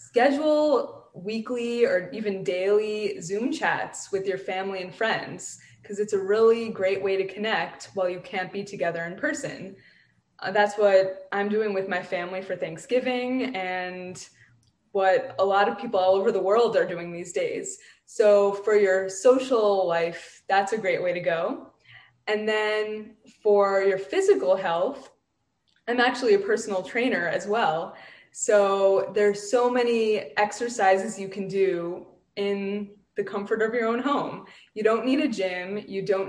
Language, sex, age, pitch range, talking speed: English, female, 20-39, 185-225 Hz, 160 wpm